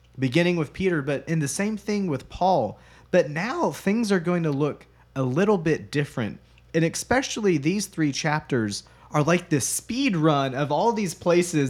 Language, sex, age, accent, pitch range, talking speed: English, male, 30-49, American, 120-170 Hz, 180 wpm